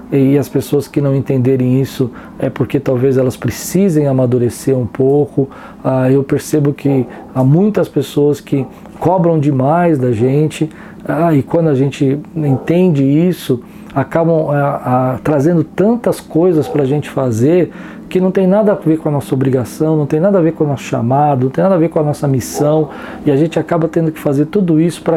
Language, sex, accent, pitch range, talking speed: Portuguese, male, Brazilian, 140-195 Hz, 195 wpm